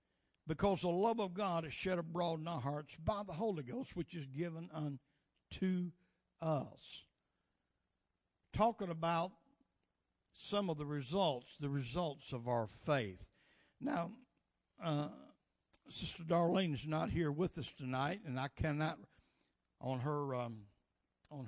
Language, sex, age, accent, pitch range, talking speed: English, male, 60-79, American, 135-175 Hz, 135 wpm